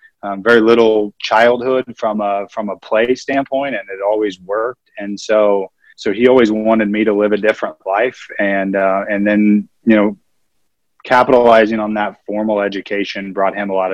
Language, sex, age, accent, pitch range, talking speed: English, male, 20-39, American, 100-120 Hz, 175 wpm